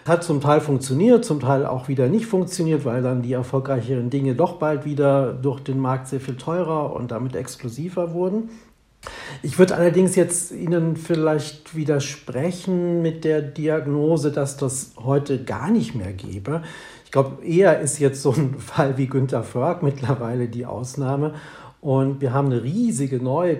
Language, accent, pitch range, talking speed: German, German, 130-155 Hz, 165 wpm